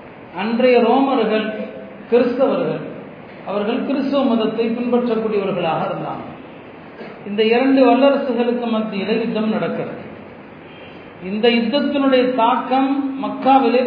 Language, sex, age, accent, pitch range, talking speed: Tamil, male, 40-59, native, 225-265 Hz, 80 wpm